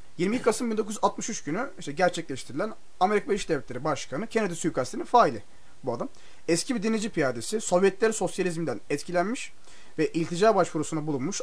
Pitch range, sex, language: 155-195 Hz, male, Turkish